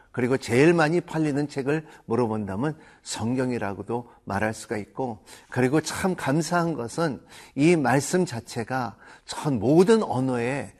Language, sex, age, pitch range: Korean, male, 50-69, 120-155 Hz